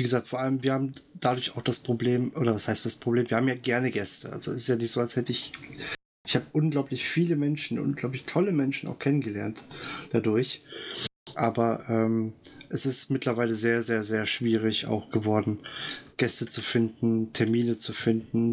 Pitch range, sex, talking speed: 115-135 Hz, male, 185 wpm